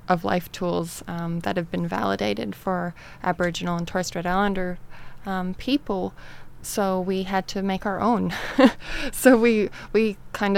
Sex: female